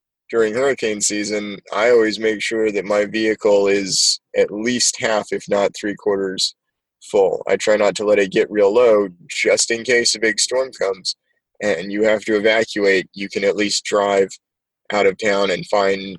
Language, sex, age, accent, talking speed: English, male, 20-39, American, 185 wpm